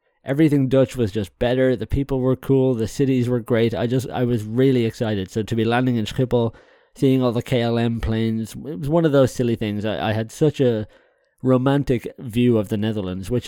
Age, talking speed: 20-39, 215 wpm